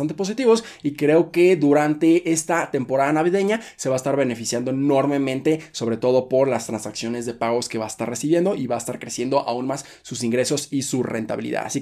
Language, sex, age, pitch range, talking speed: Spanish, male, 20-39, 130-165 Hz, 200 wpm